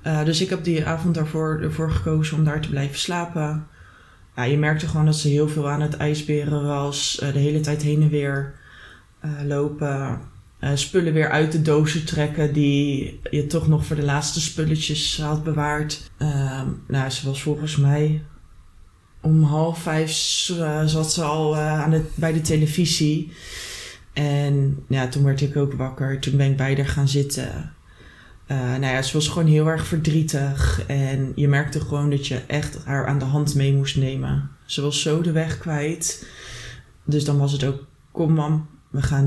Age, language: 20-39, Dutch